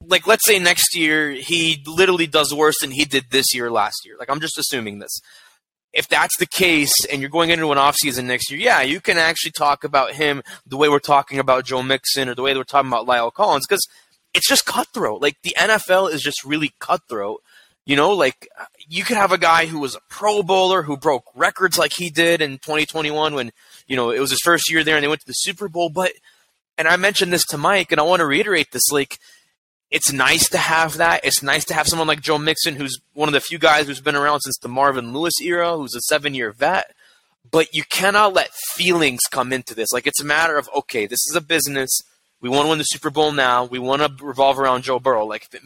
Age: 20-39